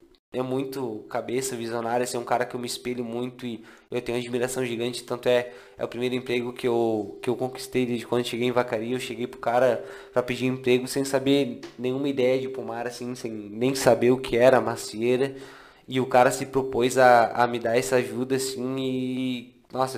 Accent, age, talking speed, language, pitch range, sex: Brazilian, 20-39, 215 wpm, Portuguese, 120-140 Hz, male